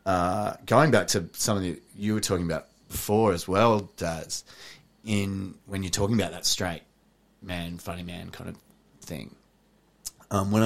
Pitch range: 90-105 Hz